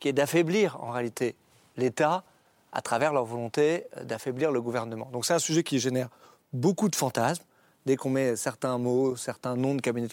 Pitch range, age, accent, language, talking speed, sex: 130-160 Hz, 40-59, French, French, 185 wpm, male